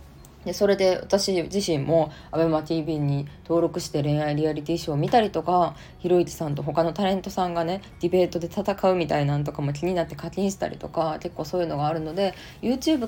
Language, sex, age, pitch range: Japanese, female, 20-39, 155-235 Hz